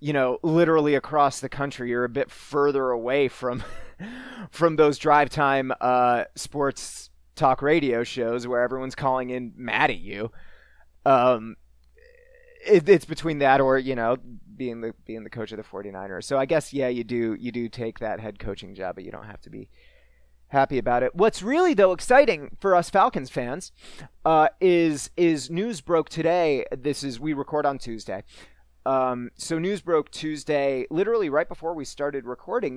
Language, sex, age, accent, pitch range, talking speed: English, male, 30-49, American, 125-160 Hz, 180 wpm